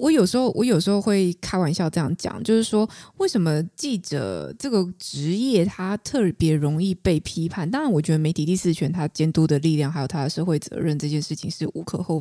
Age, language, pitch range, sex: 20-39, Chinese, 155-210 Hz, female